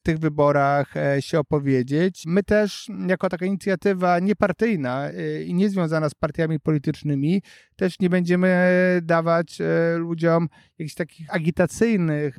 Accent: native